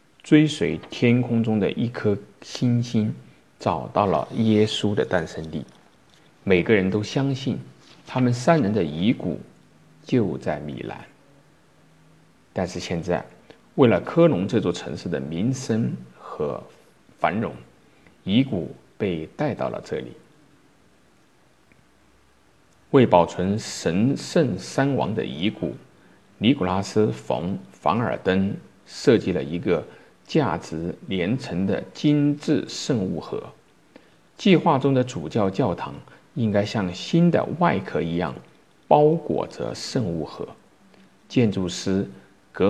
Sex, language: male, Chinese